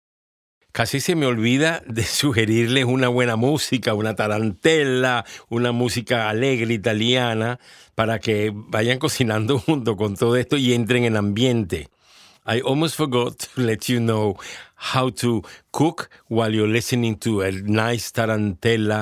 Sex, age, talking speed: male, 50-69, 140 wpm